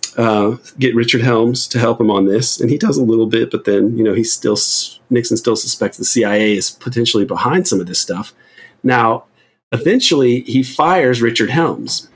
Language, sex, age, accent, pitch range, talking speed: English, male, 40-59, American, 110-130 Hz, 195 wpm